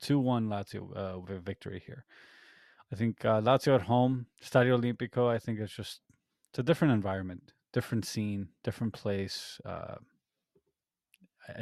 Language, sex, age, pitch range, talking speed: English, male, 20-39, 100-120 Hz, 145 wpm